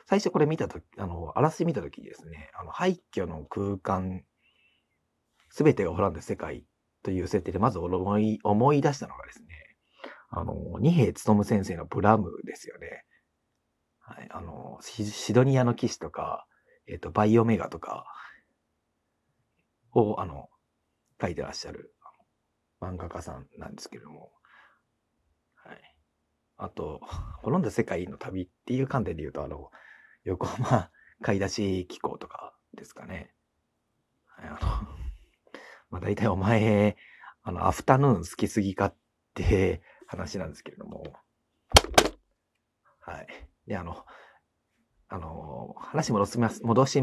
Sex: male